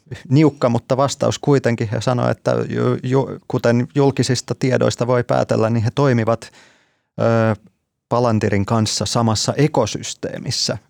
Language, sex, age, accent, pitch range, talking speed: Finnish, male, 30-49, native, 100-120 Hz, 120 wpm